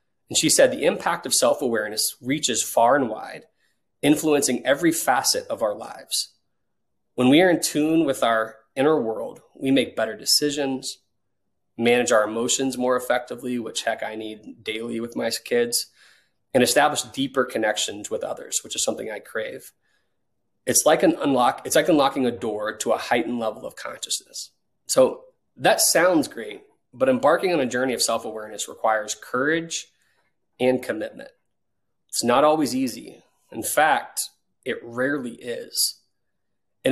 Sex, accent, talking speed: male, American, 155 wpm